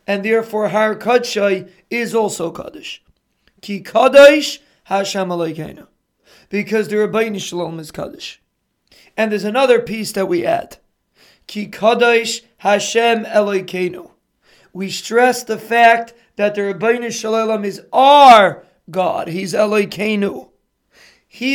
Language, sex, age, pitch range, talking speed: English, male, 30-49, 195-230 Hz, 110 wpm